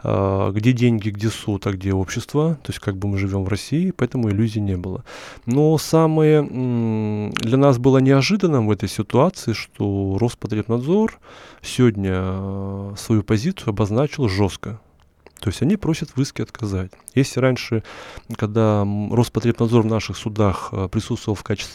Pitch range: 105-130 Hz